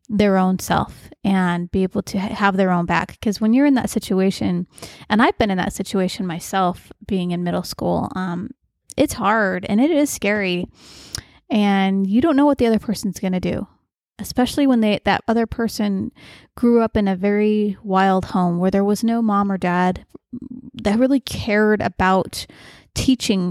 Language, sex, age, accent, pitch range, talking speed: English, female, 20-39, American, 190-225 Hz, 180 wpm